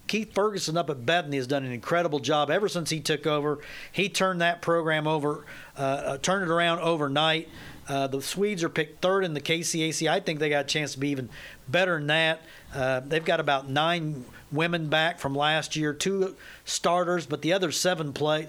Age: 50-69